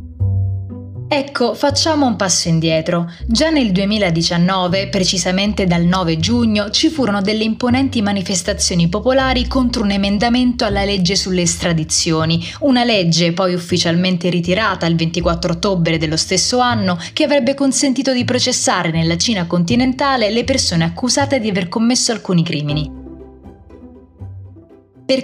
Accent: native